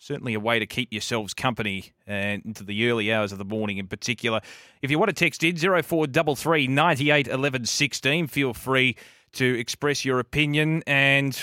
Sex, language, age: male, English, 30-49